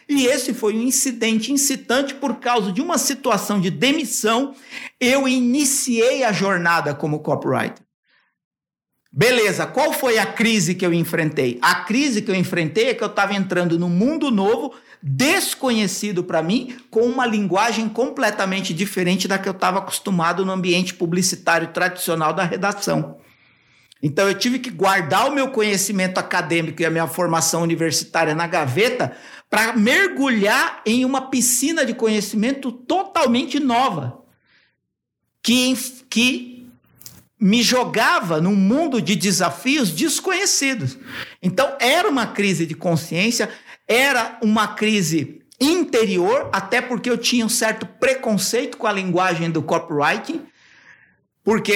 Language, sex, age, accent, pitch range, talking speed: Portuguese, male, 60-79, Brazilian, 180-255 Hz, 135 wpm